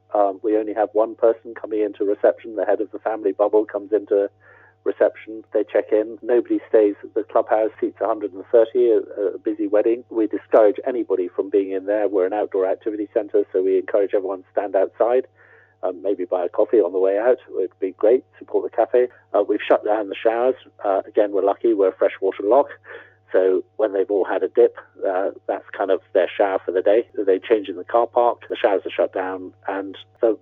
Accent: British